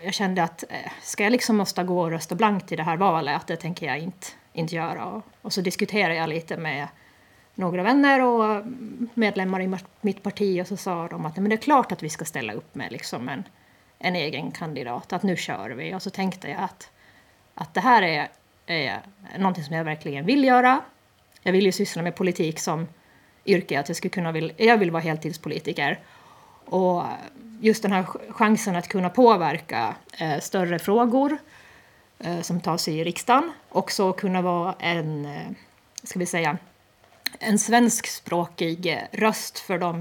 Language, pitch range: Swedish, 170-215 Hz